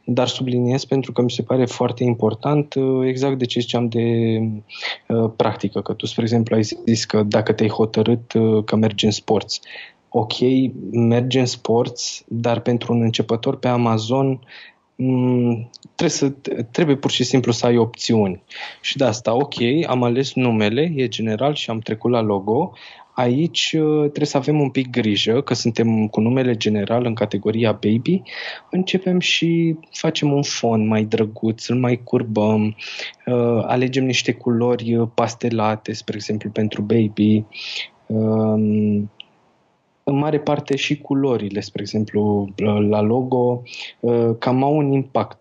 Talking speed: 145 wpm